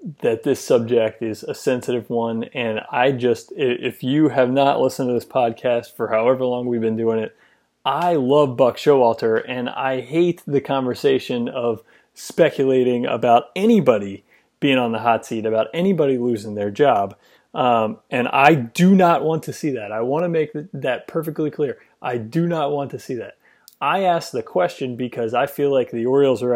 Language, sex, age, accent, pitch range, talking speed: English, male, 30-49, American, 120-160 Hz, 185 wpm